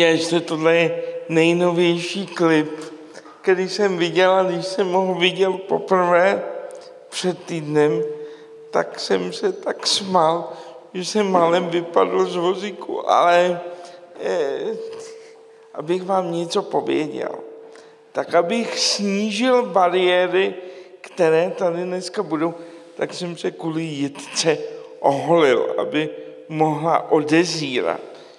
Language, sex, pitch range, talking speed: Czech, male, 160-225 Hz, 105 wpm